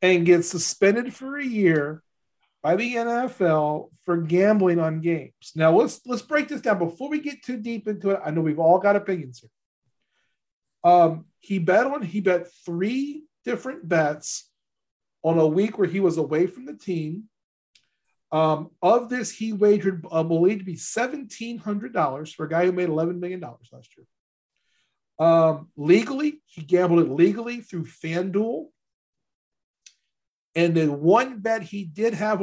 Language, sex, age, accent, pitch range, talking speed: English, male, 40-59, American, 155-210 Hz, 165 wpm